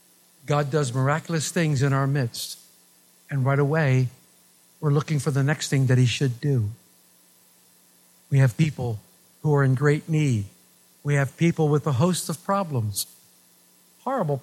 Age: 50-69